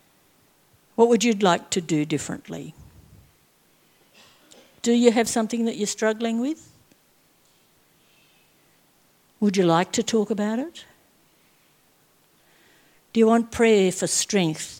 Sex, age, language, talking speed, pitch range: female, 60-79, English, 115 wpm, 180-225 Hz